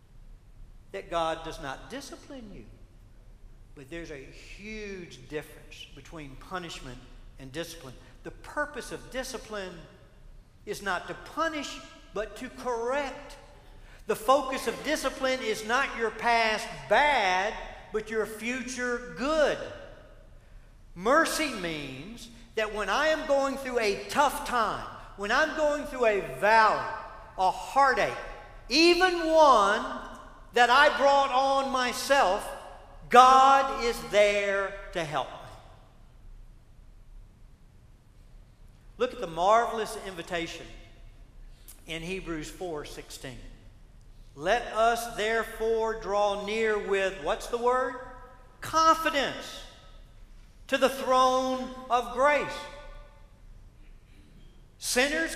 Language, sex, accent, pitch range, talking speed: English, male, American, 170-275 Hz, 105 wpm